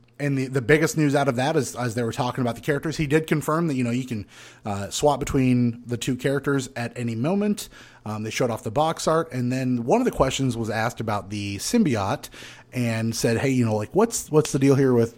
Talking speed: 250 wpm